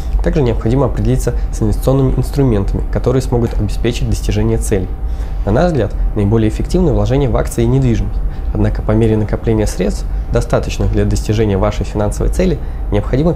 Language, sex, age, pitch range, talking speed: Russian, male, 20-39, 100-125 Hz, 150 wpm